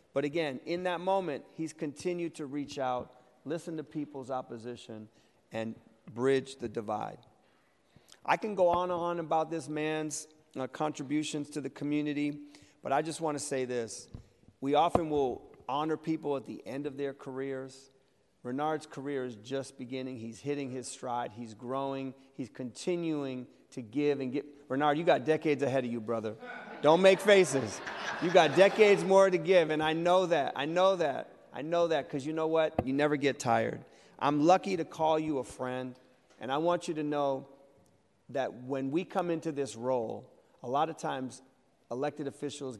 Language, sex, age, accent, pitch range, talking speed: English, male, 40-59, American, 130-155 Hz, 180 wpm